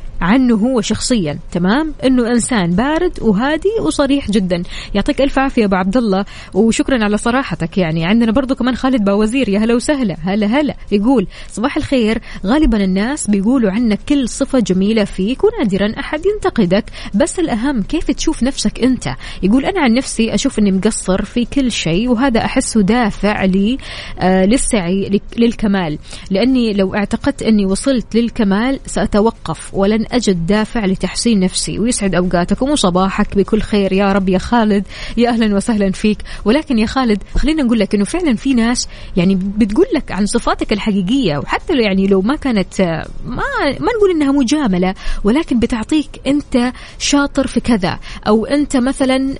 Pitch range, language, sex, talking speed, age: 200-270 Hz, Arabic, female, 155 wpm, 20-39